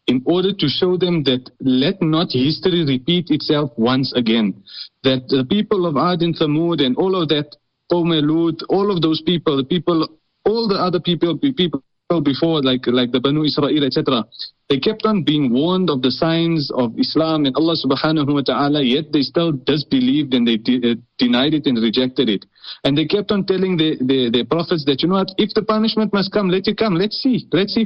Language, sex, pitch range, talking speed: English, male, 135-175 Hz, 200 wpm